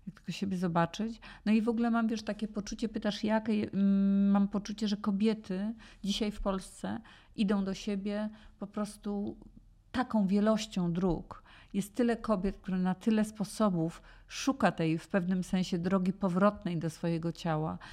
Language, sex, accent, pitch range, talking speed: Polish, female, native, 170-195 Hz, 155 wpm